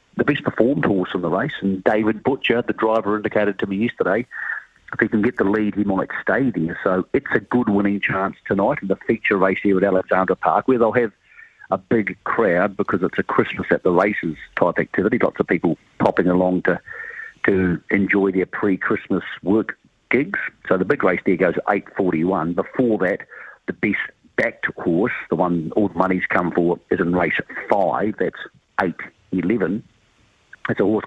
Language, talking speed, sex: English, 185 wpm, male